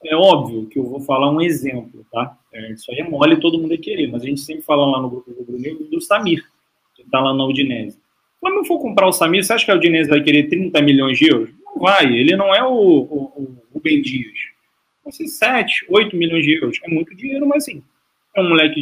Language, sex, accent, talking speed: Portuguese, male, Brazilian, 240 wpm